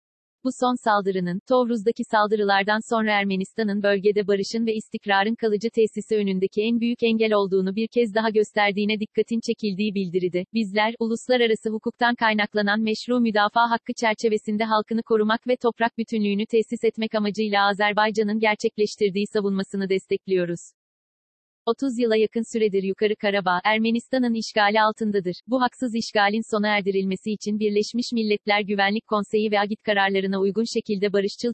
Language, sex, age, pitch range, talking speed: Turkish, female, 40-59, 200-230 Hz, 135 wpm